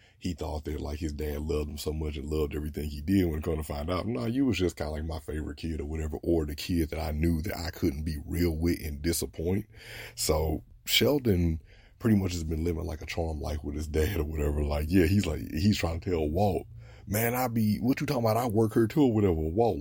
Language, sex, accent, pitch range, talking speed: English, male, American, 75-95 Hz, 260 wpm